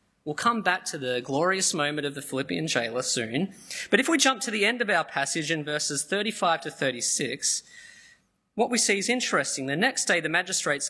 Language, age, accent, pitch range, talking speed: English, 20-39, Australian, 145-235 Hz, 205 wpm